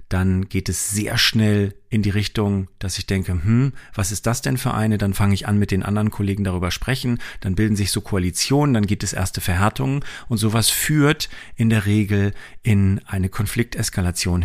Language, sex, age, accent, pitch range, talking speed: German, male, 40-59, German, 100-130 Hz, 195 wpm